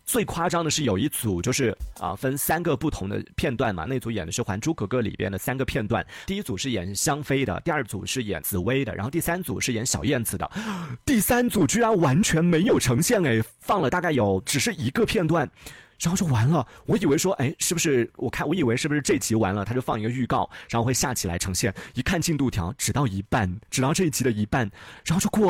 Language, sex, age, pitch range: Chinese, male, 30-49, 115-170 Hz